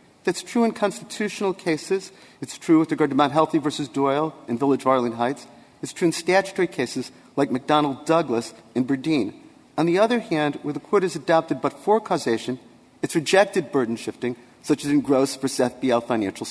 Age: 40-59